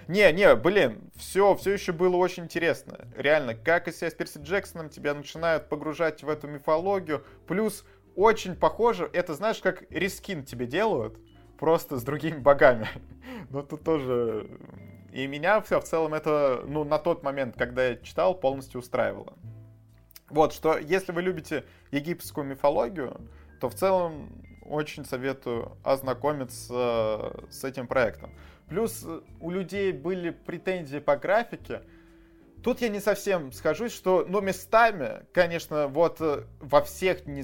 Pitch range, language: 130-180 Hz, Russian